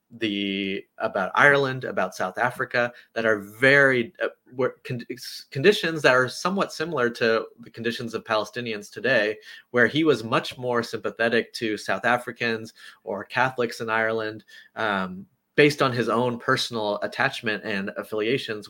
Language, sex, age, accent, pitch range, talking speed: English, male, 30-49, American, 105-135 Hz, 140 wpm